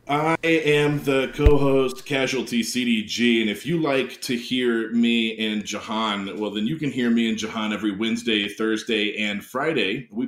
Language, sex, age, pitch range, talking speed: English, male, 30-49, 105-145 Hz, 170 wpm